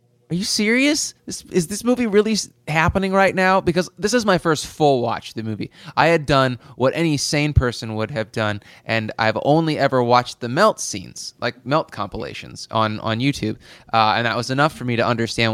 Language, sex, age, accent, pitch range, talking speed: English, male, 20-39, American, 115-155 Hz, 210 wpm